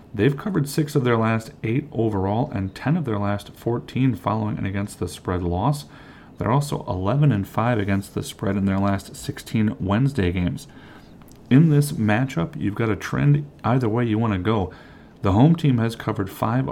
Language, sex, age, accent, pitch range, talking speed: English, male, 40-59, American, 100-135 Hz, 185 wpm